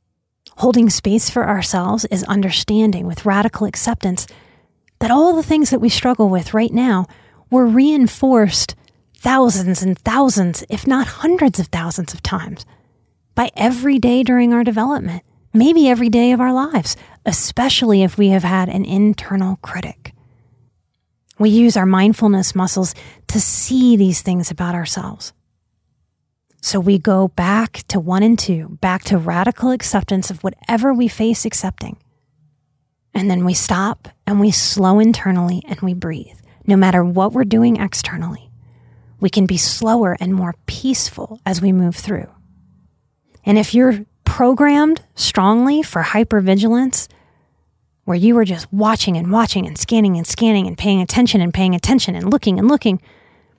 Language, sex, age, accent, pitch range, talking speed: English, female, 30-49, American, 180-230 Hz, 150 wpm